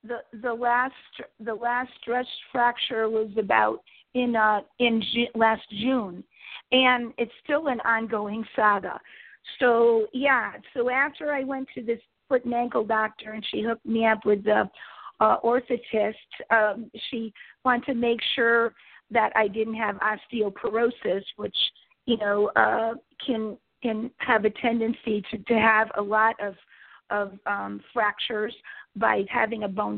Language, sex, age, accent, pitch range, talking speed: English, female, 50-69, American, 210-240 Hz, 150 wpm